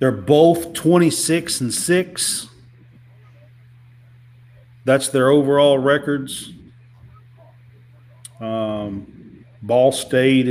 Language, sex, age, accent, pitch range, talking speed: English, male, 50-69, American, 120-155 Hz, 65 wpm